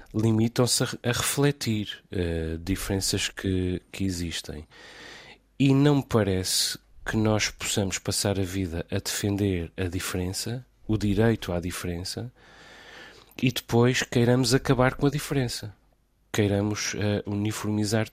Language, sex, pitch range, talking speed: Portuguese, male, 95-115 Hz, 120 wpm